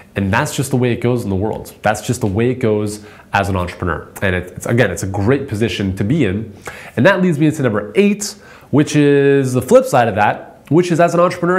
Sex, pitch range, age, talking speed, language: male, 110-155 Hz, 20-39, 250 wpm, English